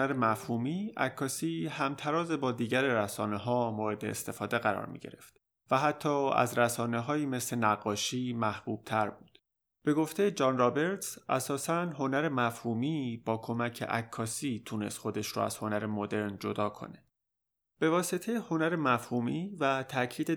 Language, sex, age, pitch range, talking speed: Persian, male, 30-49, 110-145 Hz, 135 wpm